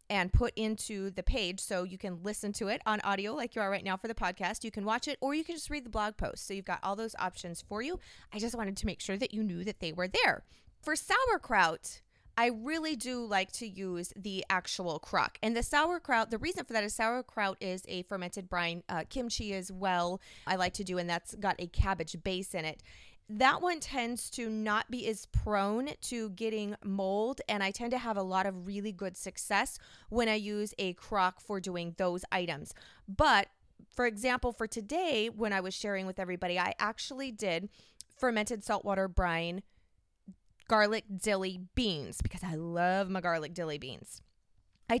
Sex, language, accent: female, English, American